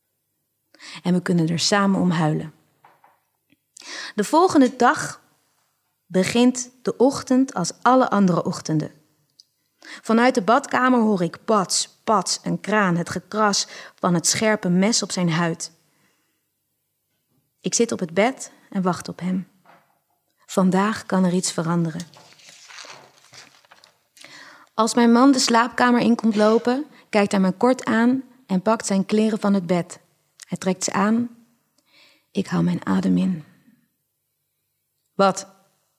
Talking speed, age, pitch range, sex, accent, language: 130 wpm, 30-49, 170-230 Hz, female, Dutch, Dutch